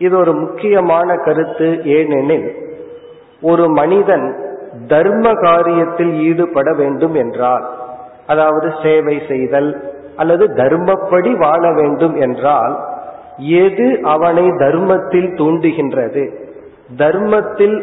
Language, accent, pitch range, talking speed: Tamil, native, 150-195 Hz, 85 wpm